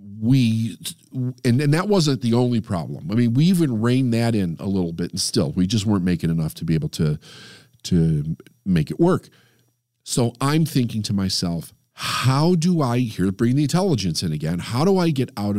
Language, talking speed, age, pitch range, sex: English, 205 wpm, 50-69, 110-145 Hz, male